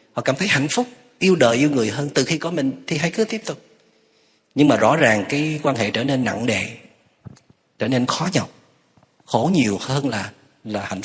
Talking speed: 215 wpm